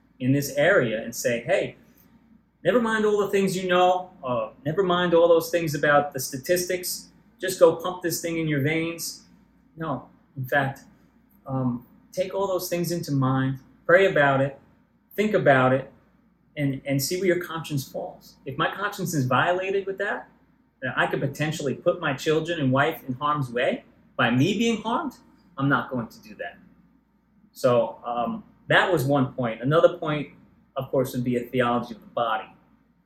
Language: English